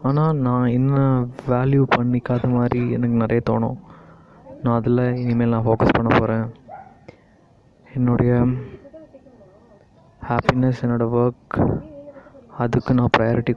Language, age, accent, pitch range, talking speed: Tamil, 20-39, native, 120-130 Hz, 100 wpm